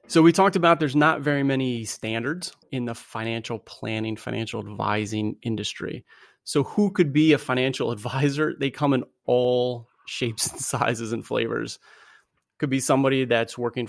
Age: 30-49